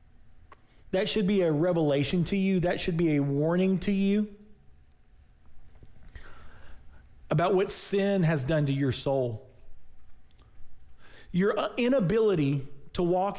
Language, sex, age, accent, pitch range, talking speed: English, male, 40-59, American, 145-210 Hz, 115 wpm